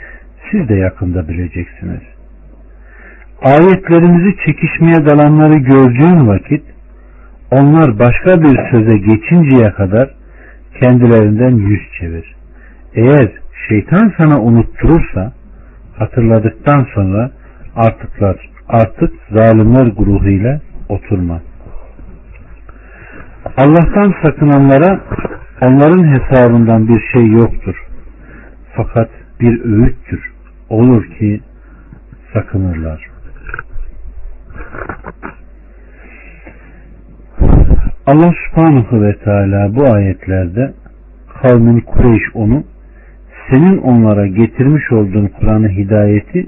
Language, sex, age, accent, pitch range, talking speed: Turkish, male, 50-69, native, 100-140 Hz, 75 wpm